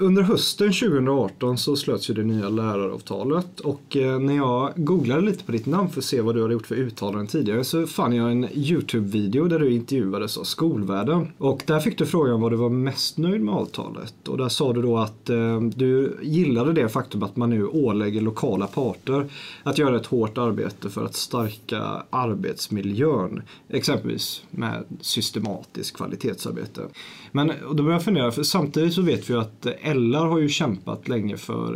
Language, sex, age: Swedish, male, 30-49